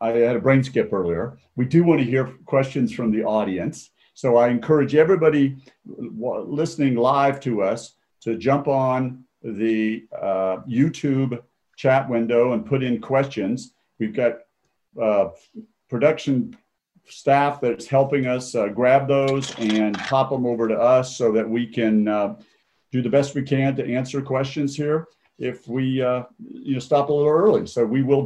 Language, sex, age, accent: English, male, 50-69, American